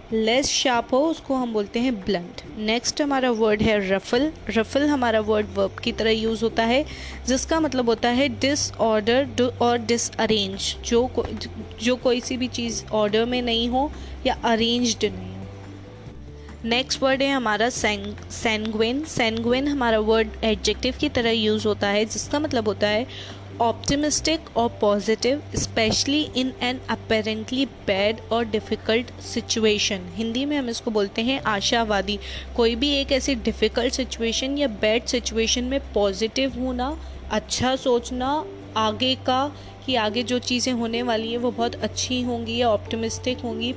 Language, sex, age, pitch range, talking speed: Hindi, female, 20-39, 215-255 Hz, 150 wpm